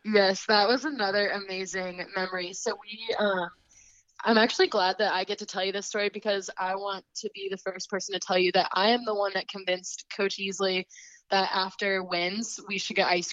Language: English